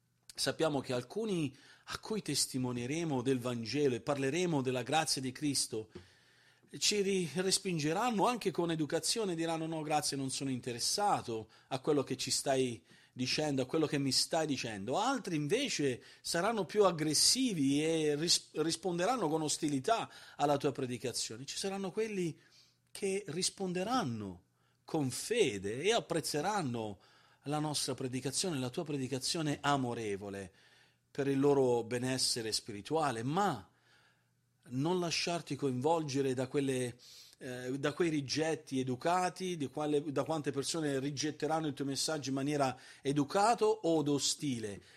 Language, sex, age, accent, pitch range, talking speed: Italian, male, 40-59, native, 130-165 Hz, 125 wpm